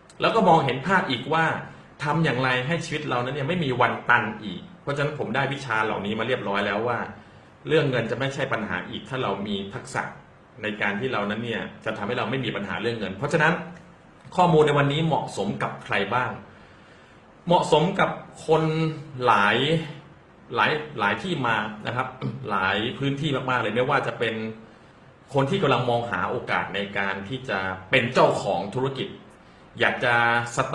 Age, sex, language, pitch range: 30-49, male, Thai, 130-165 Hz